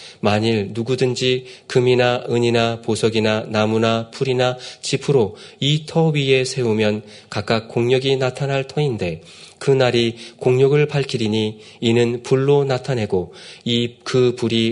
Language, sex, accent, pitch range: Korean, male, native, 110-140 Hz